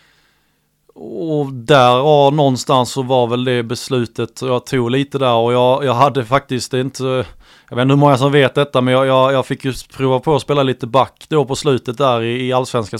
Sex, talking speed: male, 210 wpm